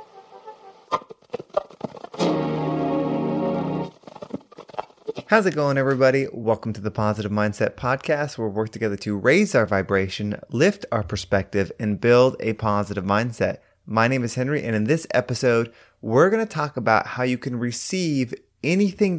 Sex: male